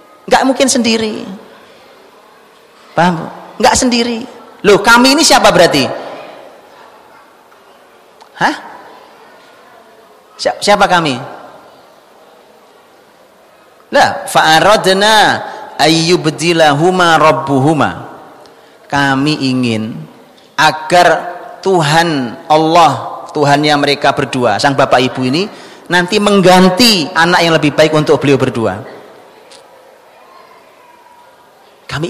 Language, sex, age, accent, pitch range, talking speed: Indonesian, male, 30-49, native, 150-200 Hz, 65 wpm